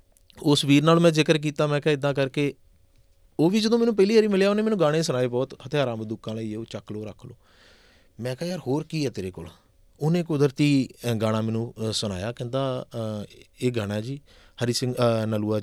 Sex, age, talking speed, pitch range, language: male, 30-49, 190 wpm, 115-150 Hz, Punjabi